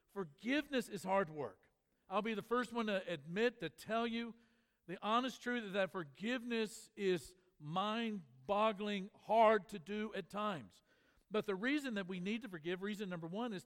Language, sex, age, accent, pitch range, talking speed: English, male, 50-69, American, 170-210 Hz, 165 wpm